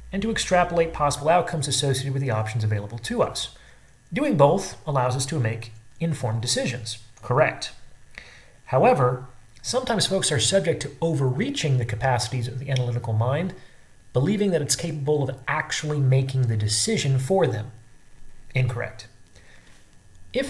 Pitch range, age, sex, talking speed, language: 120-165 Hz, 30-49, male, 140 wpm, English